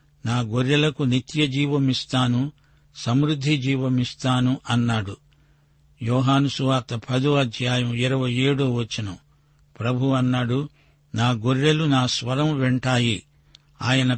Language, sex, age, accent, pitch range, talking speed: Telugu, male, 60-79, native, 125-145 Hz, 90 wpm